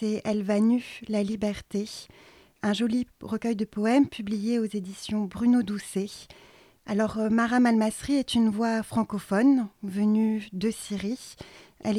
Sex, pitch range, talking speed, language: female, 200-225 Hz, 145 wpm, French